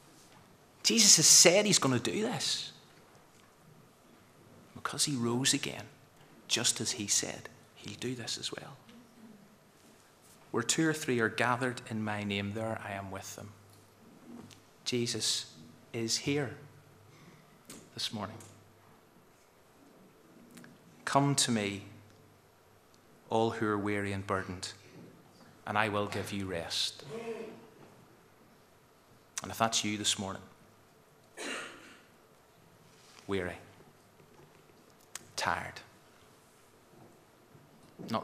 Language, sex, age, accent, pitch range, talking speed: English, male, 30-49, British, 100-125 Hz, 100 wpm